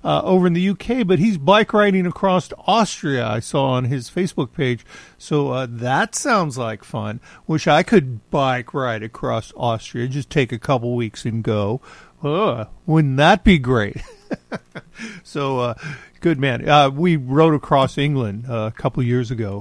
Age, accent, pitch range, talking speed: 50-69, American, 120-180 Hz, 170 wpm